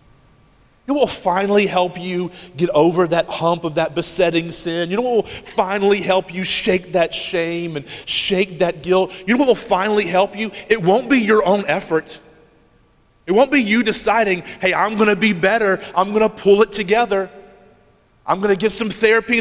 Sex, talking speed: male, 195 wpm